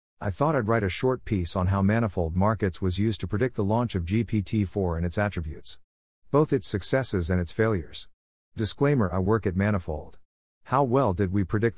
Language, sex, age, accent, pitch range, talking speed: English, male, 50-69, American, 90-115 Hz, 195 wpm